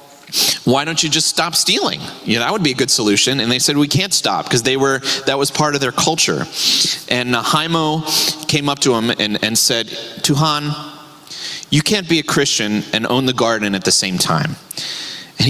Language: English